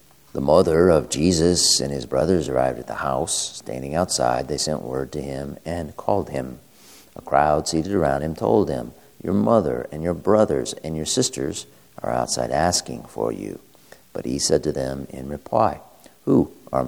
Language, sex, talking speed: English, male, 180 wpm